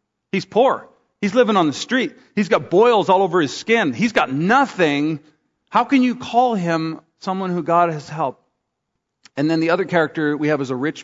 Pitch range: 145-195 Hz